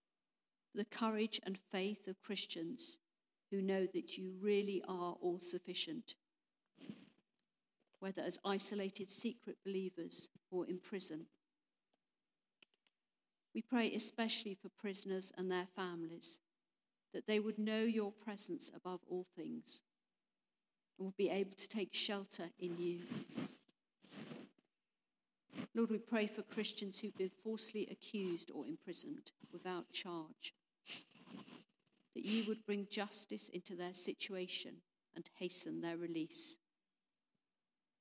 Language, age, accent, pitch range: English, 50-69, British, 180-225 Hz